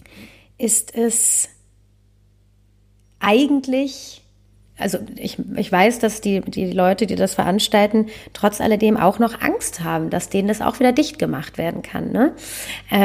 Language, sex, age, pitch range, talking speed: German, female, 30-49, 180-220 Hz, 140 wpm